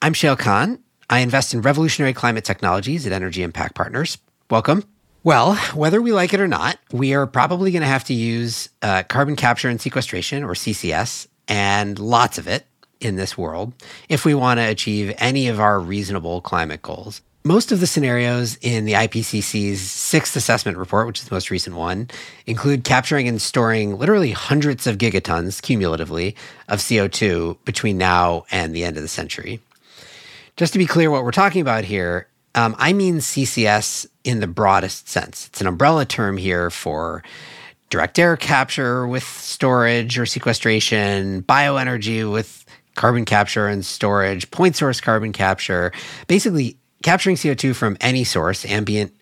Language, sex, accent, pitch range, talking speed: English, male, American, 95-135 Hz, 165 wpm